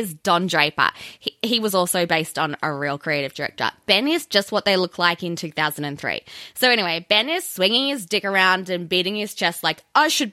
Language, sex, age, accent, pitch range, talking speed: English, female, 20-39, Australian, 185-260 Hz, 215 wpm